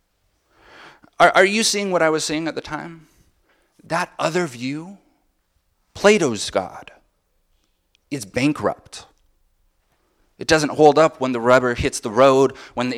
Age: 30-49